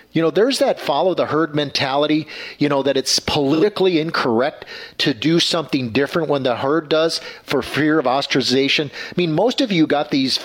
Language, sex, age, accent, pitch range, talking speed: English, male, 50-69, American, 140-195 Hz, 190 wpm